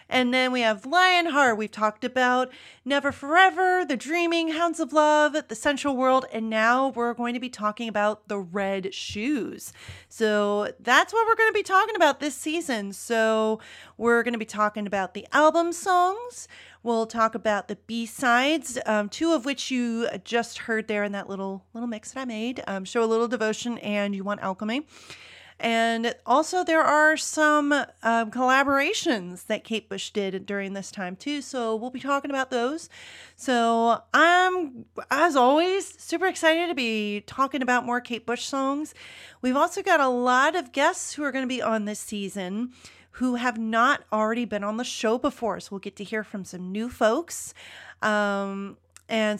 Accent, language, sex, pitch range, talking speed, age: American, English, female, 210-290 Hz, 180 wpm, 30-49